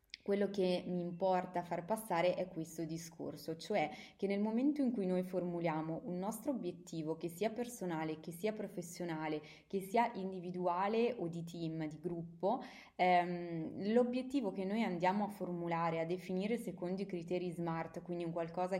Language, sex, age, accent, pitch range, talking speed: Italian, female, 20-39, native, 170-205 Hz, 160 wpm